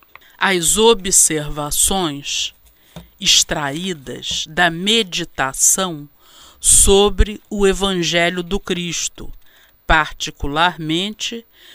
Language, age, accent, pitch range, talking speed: Portuguese, 50-69, Brazilian, 155-215 Hz, 55 wpm